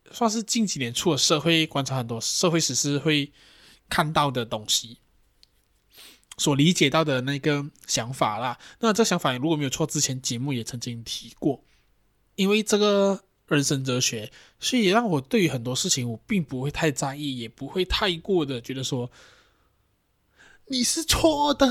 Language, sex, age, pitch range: Chinese, male, 20-39, 130-190 Hz